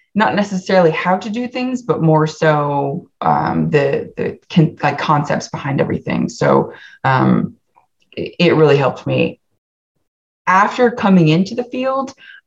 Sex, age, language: female, 20-39, English